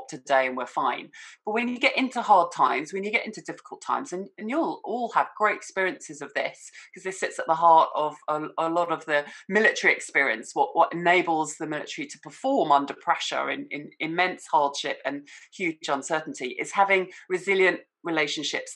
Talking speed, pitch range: 190 wpm, 160-205 Hz